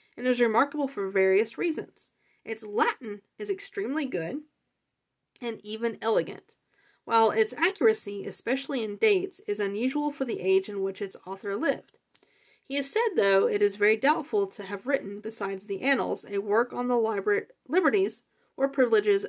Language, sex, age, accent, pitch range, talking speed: English, female, 30-49, American, 205-285 Hz, 160 wpm